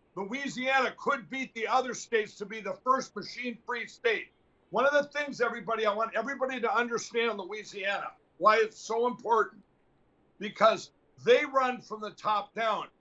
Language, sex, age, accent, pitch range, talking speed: English, male, 60-79, American, 210-260 Hz, 160 wpm